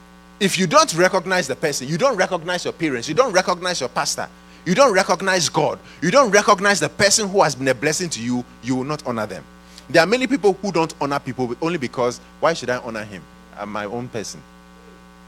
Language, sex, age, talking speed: English, male, 30-49, 220 wpm